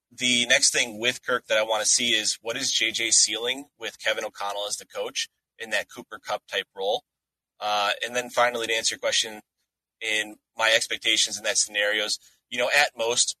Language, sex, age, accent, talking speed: English, male, 20-39, American, 200 wpm